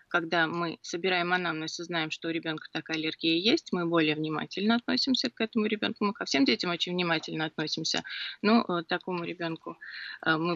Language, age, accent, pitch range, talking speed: Russian, 20-39, native, 160-190 Hz, 175 wpm